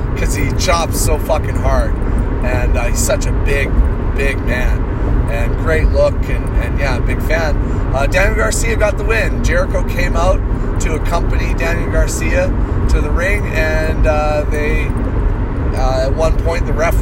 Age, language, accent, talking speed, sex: 30-49, English, American, 165 wpm, male